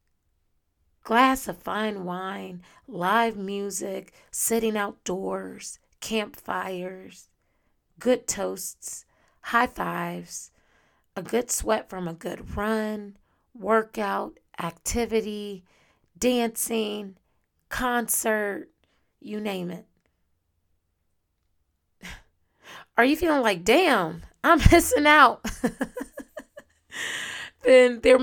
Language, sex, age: English, female, 30-49